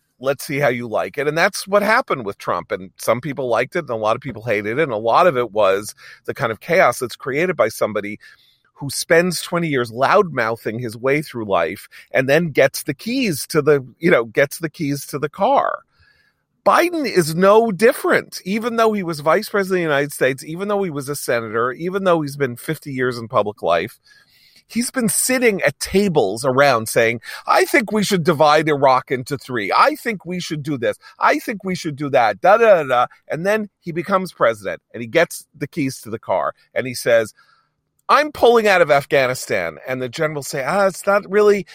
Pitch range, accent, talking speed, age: 145-215 Hz, American, 220 wpm, 40-59